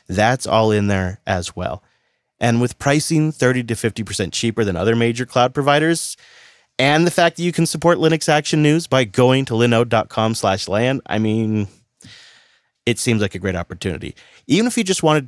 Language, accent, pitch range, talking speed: English, American, 105-140 Hz, 185 wpm